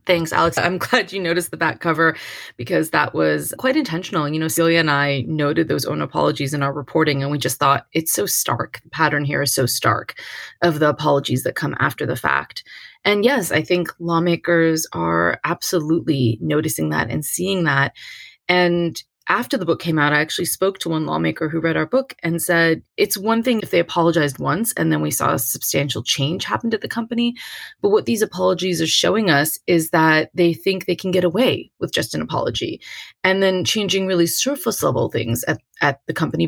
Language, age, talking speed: English, 20-39, 205 wpm